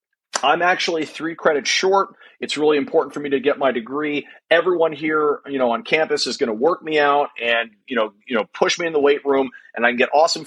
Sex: male